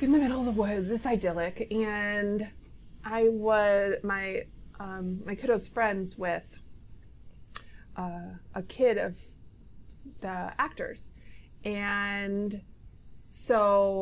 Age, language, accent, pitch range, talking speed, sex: 20-39, English, American, 190-220 Hz, 105 wpm, female